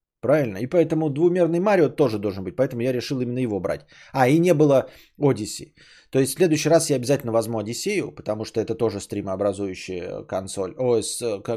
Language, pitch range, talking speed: Bulgarian, 110-150 Hz, 170 wpm